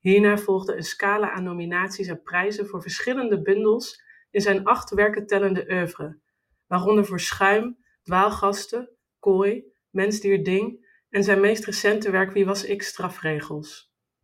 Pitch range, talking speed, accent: 180-210 Hz, 145 wpm, Dutch